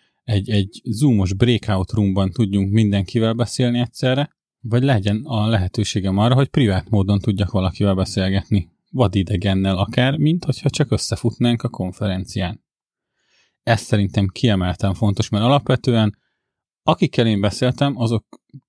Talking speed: 125 wpm